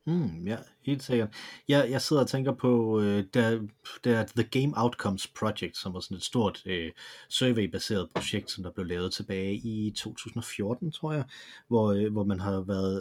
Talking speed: 185 wpm